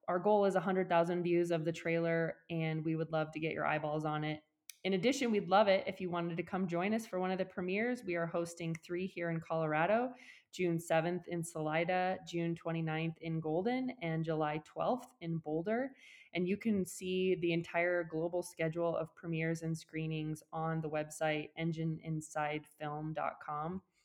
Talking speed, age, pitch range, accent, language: 175 wpm, 20-39, 155-175 Hz, American, English